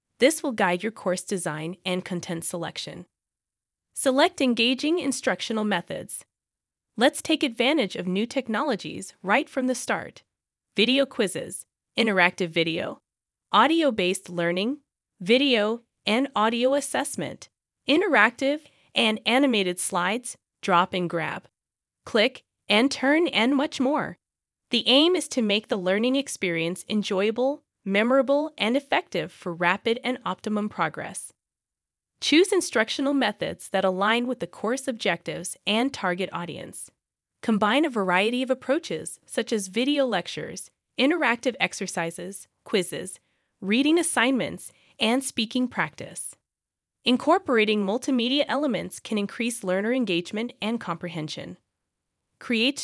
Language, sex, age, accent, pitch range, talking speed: English, female, 20-39, American, 190-270 Hz, 115 wpm